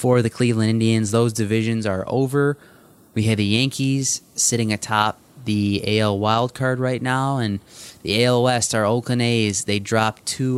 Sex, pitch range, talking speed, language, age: male, 100-120 Hz, 165 wpm, English, 20-39